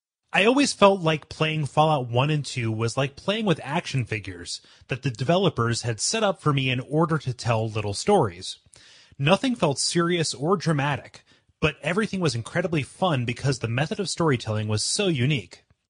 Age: 30-49